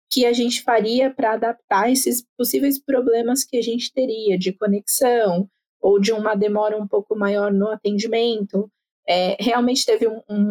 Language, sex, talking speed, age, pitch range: Portuguese, female, 165 wpm, 20-39, 210-255 Hz